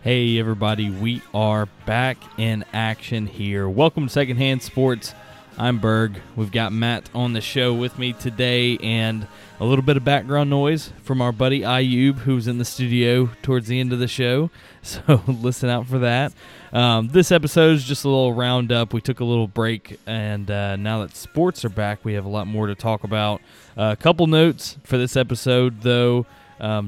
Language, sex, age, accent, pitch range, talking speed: English, male, 20-39, American, 110-130 Hz, 190 wpm